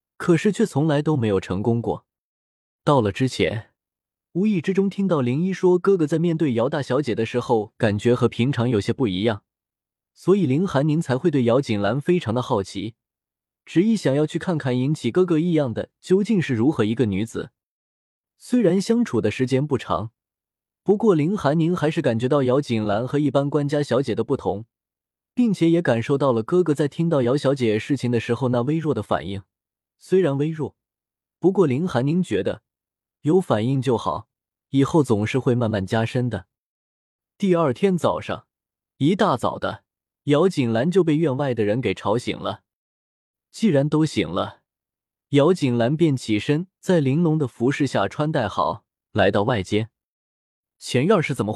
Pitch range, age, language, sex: 110-160 Hz, 20-39, Chinese, male